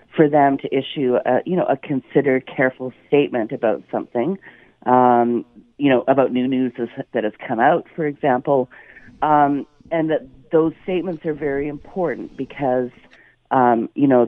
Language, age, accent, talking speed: English, 40-59, American, 150 wpm